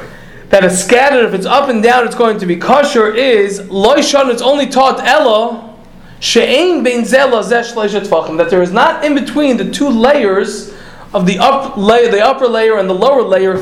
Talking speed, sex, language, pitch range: 170 wpm, male, English, 205-270 Hz